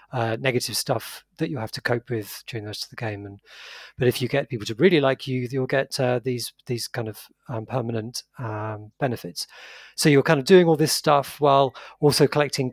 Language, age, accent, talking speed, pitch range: English, 40-59, British, 220 wpm, 120-150 Hz